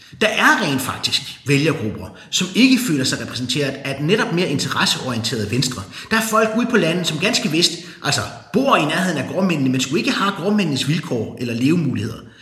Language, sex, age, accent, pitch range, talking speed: Danish, male, 30-49, native, 125-185 Hz, 185 wpm